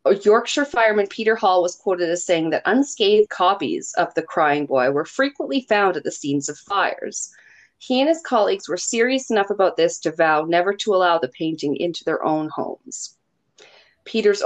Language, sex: English, female